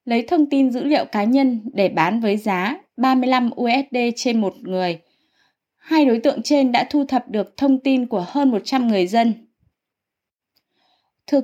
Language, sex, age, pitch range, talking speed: Vietnamese, female, 20-39, 225-270 Hz, 170 wpm